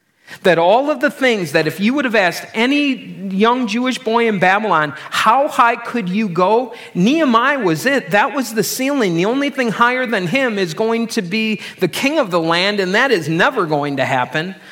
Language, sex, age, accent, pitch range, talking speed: English, male, 40-59, American, 155-225 Hz, 210 wpm